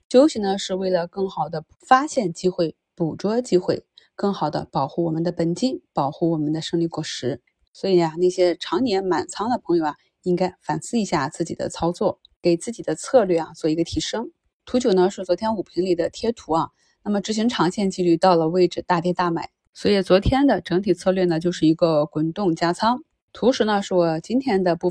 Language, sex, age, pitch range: Chinese, female, 20-39, 170-200 Hz